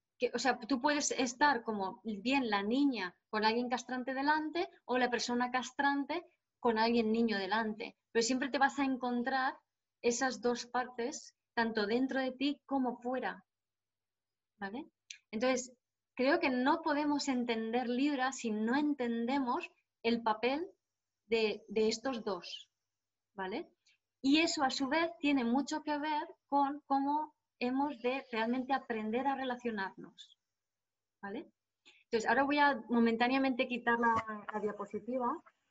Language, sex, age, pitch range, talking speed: Spanish, female, 20-39, 220-275 Hz, 135 wpm